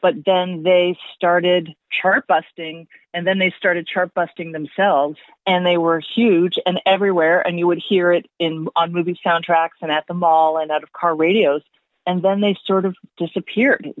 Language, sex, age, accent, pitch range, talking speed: English, female, 40-59, American, 165-195 Hz, 185 wpm